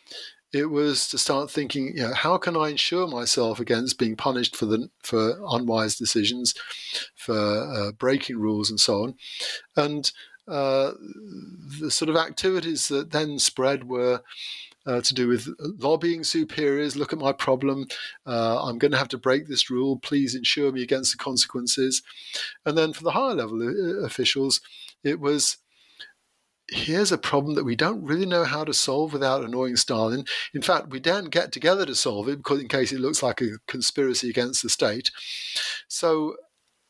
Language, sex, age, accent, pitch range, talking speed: English, male, 50-69, British, 120-150 Hz, 170 wpm